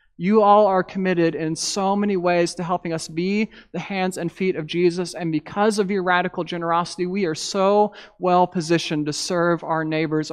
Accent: American